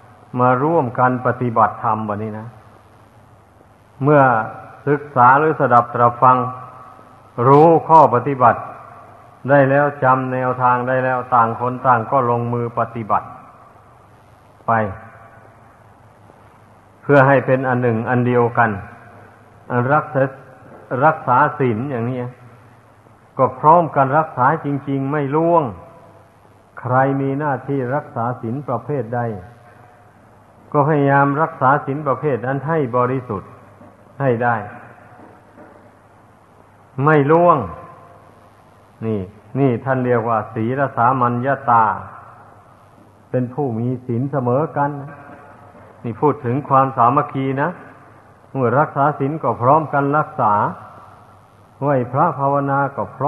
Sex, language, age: male, Thai, 60-79